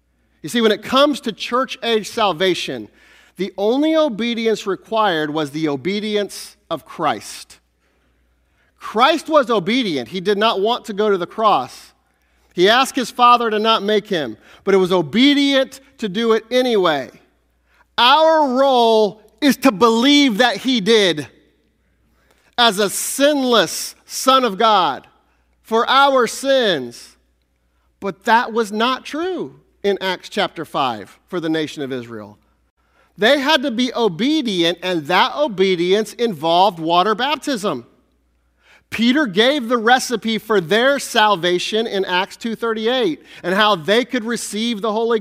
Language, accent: English, American